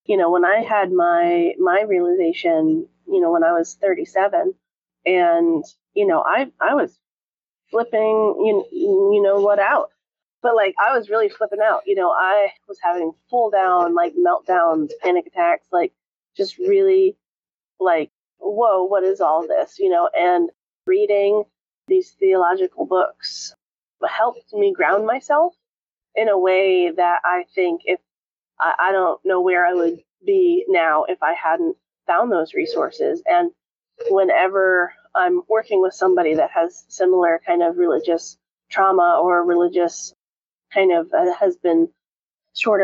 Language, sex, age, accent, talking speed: English, female, 30-49, American, 145 wpm